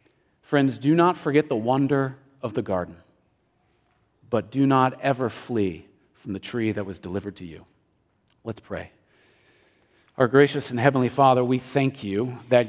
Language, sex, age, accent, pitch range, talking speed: English, male, 40-59, American, 105-140 Hz, 155 wpm